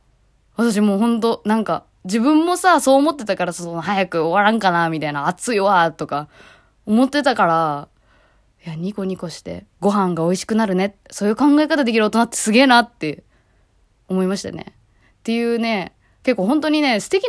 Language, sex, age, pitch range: Japanese, female, 20-39, 170-245 Hz